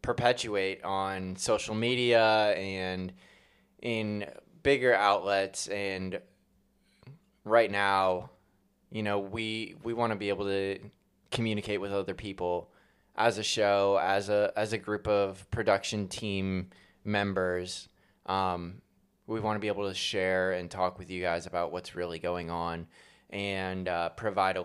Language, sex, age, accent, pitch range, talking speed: English, male, 20-39, American, 90-105 Hz, 140 wpm